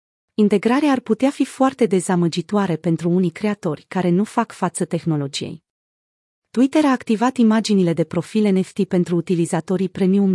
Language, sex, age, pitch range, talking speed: Romanian, female, 30-49, 175-225 Hz, 140 wpm